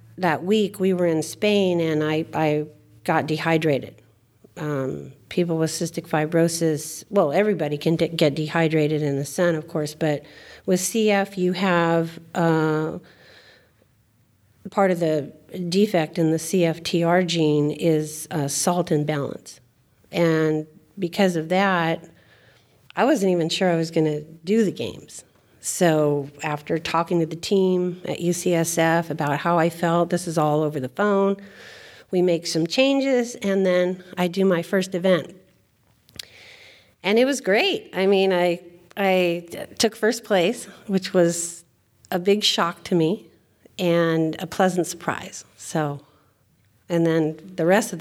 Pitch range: 150-180 Hz